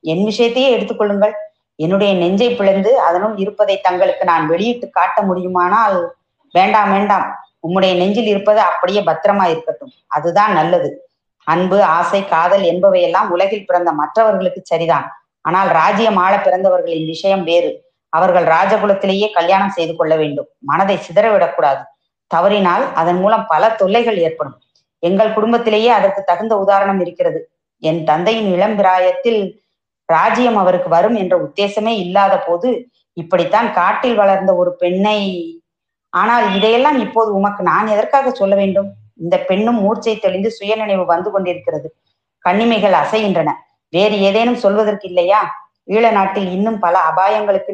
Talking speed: 115 wpm